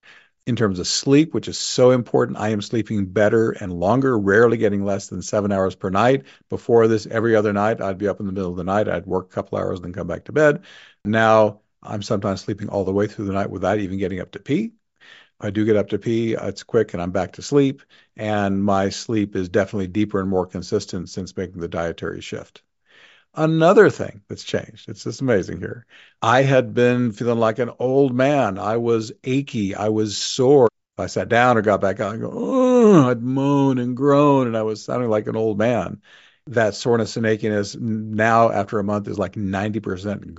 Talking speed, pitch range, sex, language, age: 215 wpm, 95-115 Hz, male, English, 50-69